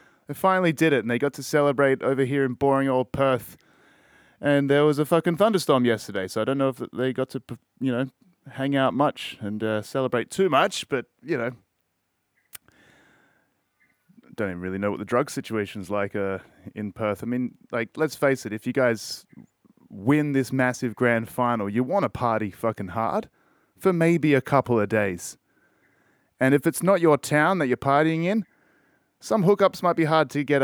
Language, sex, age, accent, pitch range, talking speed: English, male, 20-39, Australian, 100-140 Hz, 190 wpm